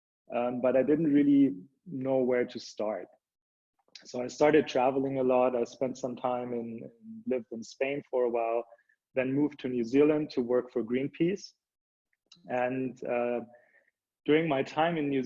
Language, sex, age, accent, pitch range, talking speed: English, male, 30-49, German, 120-135 Hz, 165 wpm